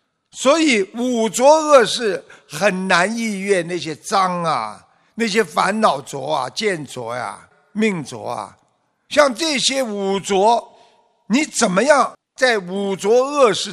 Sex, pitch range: male, 185-255 Hz